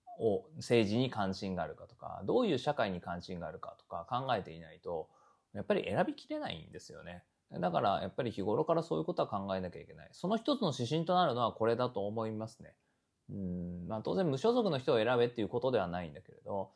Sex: male